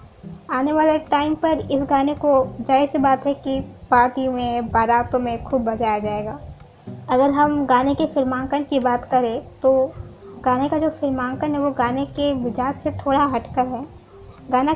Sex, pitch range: female, 245-295 Hz